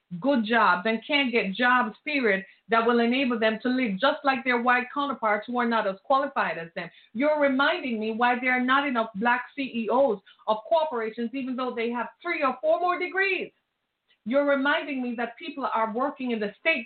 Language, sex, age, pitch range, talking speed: English, female, 50-69, 215-275 Hz, 200 wpm